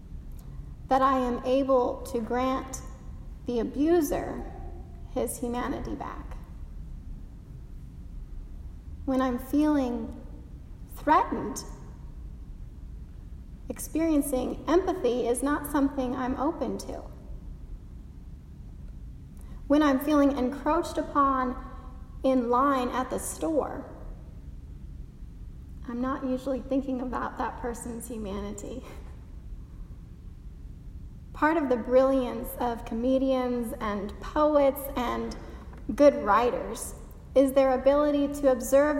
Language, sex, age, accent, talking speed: English, female, 30-49, American, 90 wpm